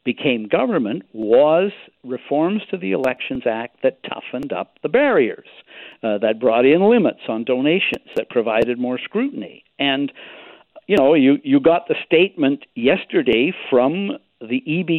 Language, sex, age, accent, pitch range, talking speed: English, male, 60-79, American, 115-190 Hz, 145 wpm